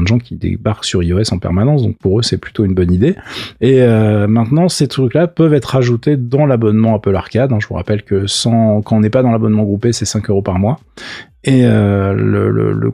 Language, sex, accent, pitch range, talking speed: French, male, French, 100-135 Hz, 235 wpm